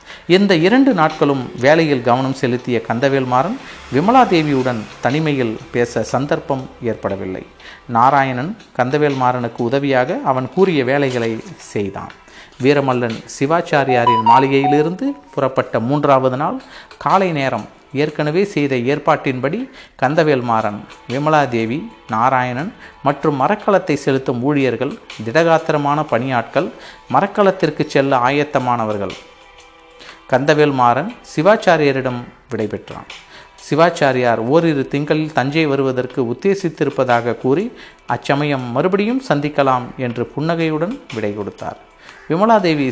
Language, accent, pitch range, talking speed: Tamil, native, 125-155 Hz, 90 wpm